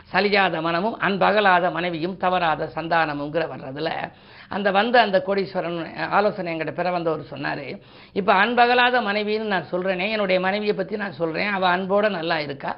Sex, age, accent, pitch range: female, 50-69, native, 165-210 Hz